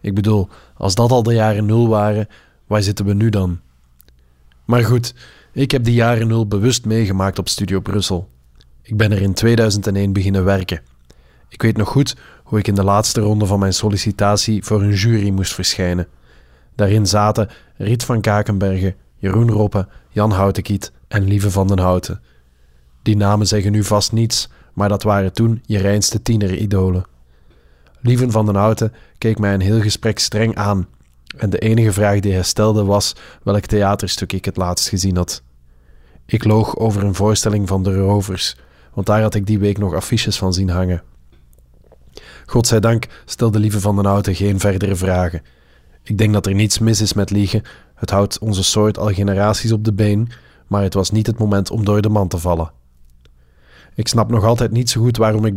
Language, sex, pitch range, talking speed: Dutch, male, 90-110 Hz, 185 wpm